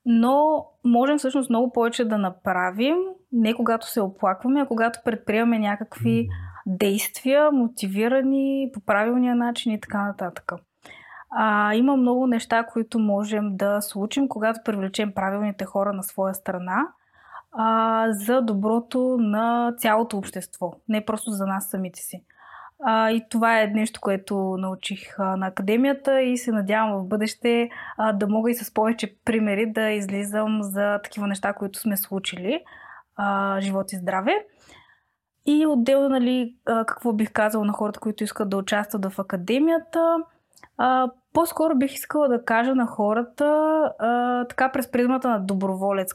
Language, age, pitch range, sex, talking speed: Bulgarian, 20-39, 200-250 Hz, female, 145 wpm